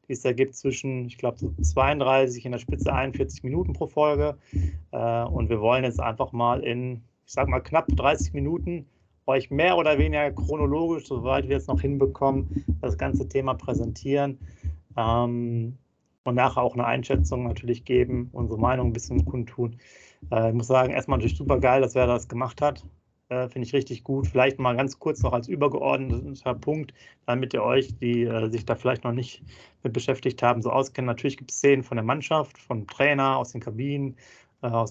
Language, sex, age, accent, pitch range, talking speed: German, male, 30-49, German, 120-135 Hz, 185 wpm